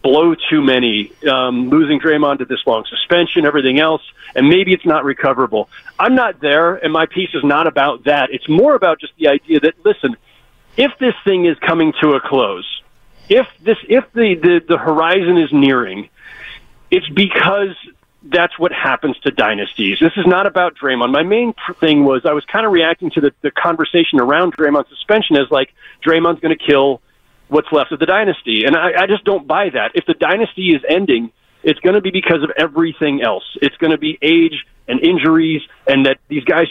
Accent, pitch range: American, 150-195 Hz